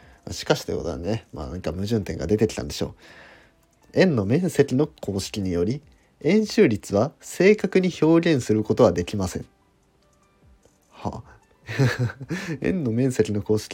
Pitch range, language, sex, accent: 105-145 Hz, Japanese, male, native